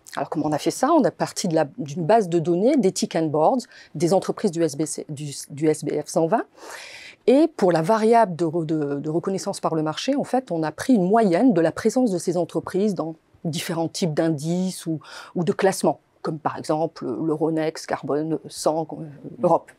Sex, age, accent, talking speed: female, 30-49, French, 200 wpm